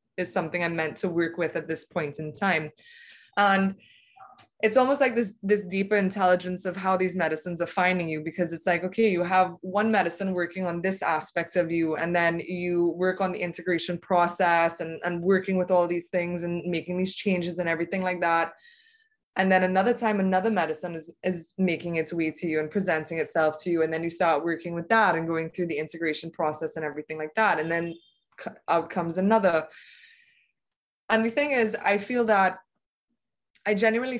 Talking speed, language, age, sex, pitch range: 200 wpm, English, 20-39, female, 170-205 Hz